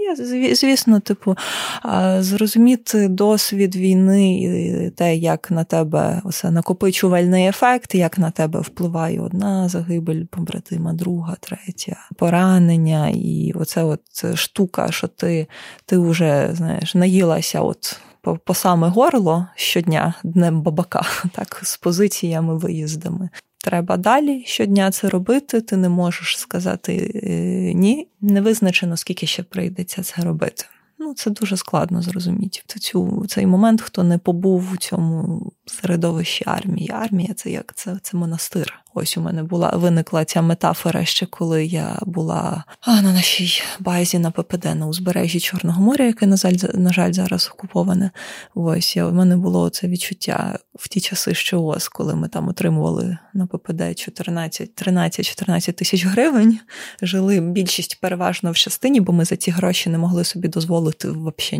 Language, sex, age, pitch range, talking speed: Ukrainian, female, 20-39, 170-195 Hz, 140 wpm